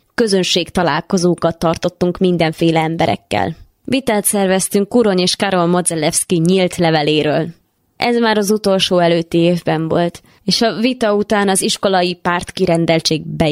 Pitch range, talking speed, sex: 170-195 Hz, 130 wpm, female